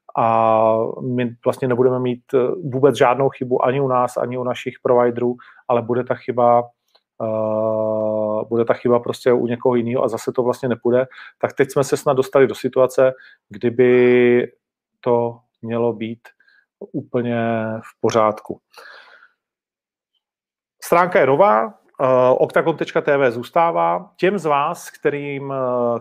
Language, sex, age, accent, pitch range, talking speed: Czech, male, 40-59, native, 120-135 Hz, 135 wpm